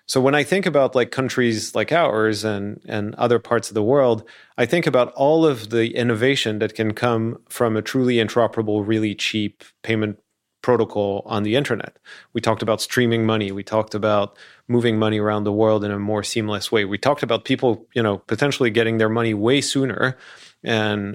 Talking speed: 195 wpm